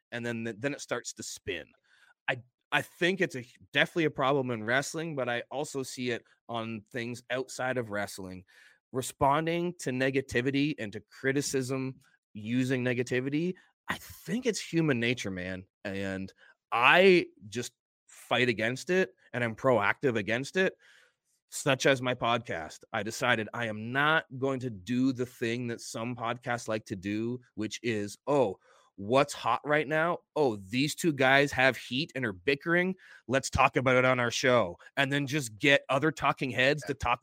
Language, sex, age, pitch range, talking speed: English, male, 30-49, 120-160 Hz, 170 wpm